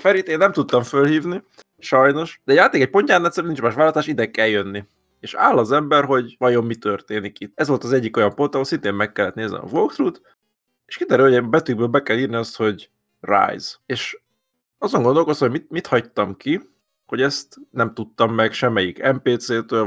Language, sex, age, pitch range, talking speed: Hungarian, male, 20-39, 110-140 Hz, 200 wpm